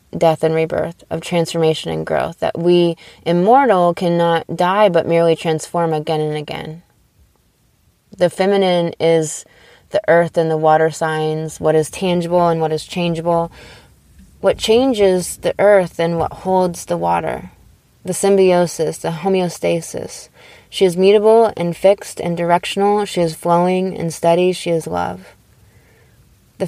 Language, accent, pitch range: English, American, 160-185 Hz